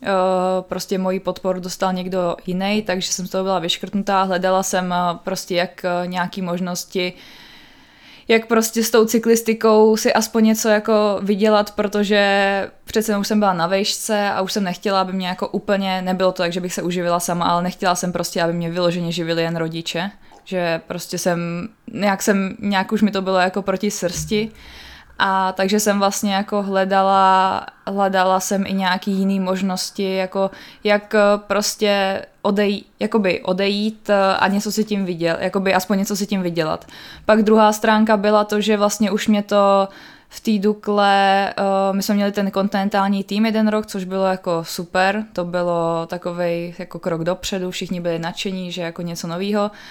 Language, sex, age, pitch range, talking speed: Czech, female, 20-39, 180-205 Hz, 170 wpm